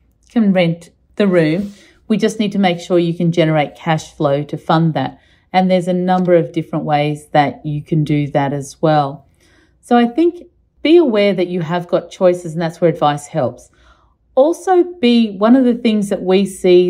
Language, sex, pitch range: English, female, 155-195 Hz